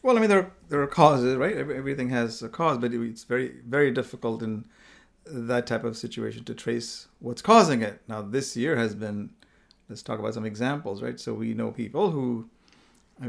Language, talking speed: English, 200 wpm